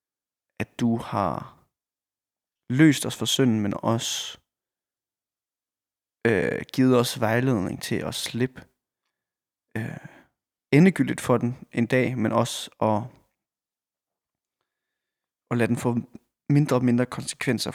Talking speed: 105 wpm